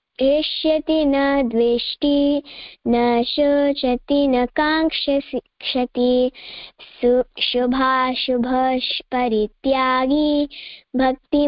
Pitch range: 245-285 Hz